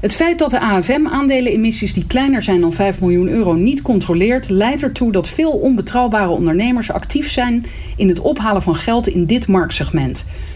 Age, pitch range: 40-59, 170-245 Hz